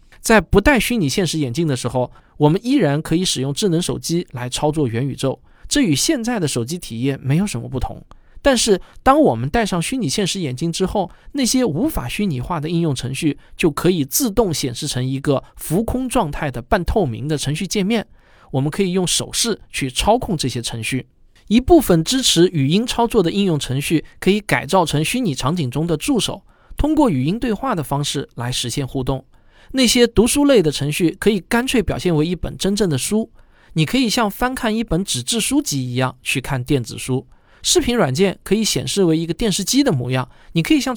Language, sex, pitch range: Chinese, male, 140-225 Hz